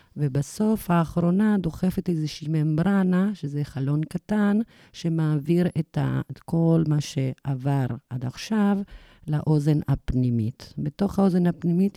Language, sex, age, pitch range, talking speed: Hebrew, female, 50-69, 135-170 Hz, 100 wpm